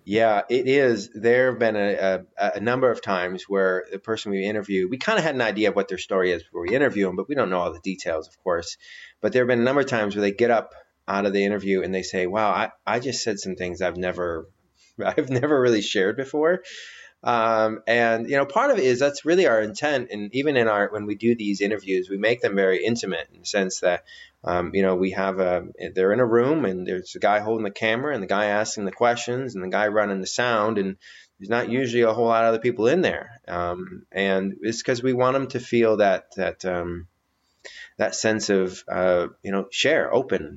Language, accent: English, American